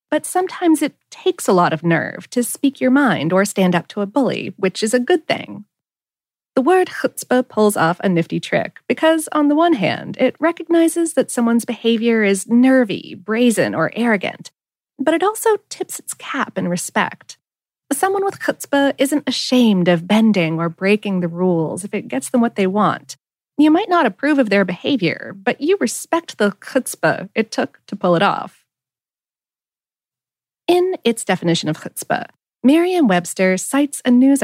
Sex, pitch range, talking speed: female, 205-305 Hz, 175 wpm